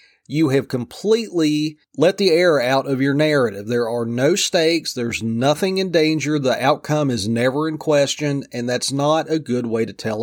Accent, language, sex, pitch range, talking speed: American, English, male, 125-155 Hz, 190 wpm